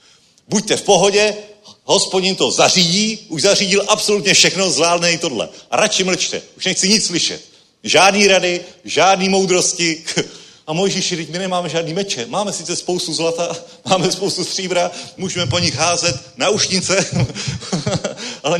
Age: 40-59